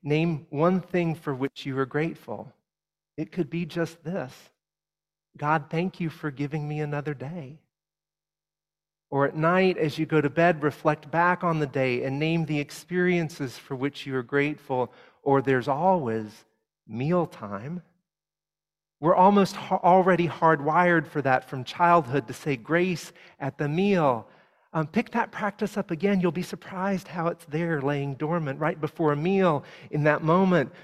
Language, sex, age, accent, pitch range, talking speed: English, male, 40-59, American, 140-170 Hz, 160 wpm